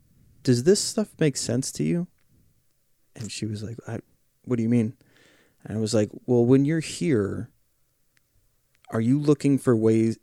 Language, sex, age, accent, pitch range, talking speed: English, male, 30-49, American, 105-130 Hz, 165 wpm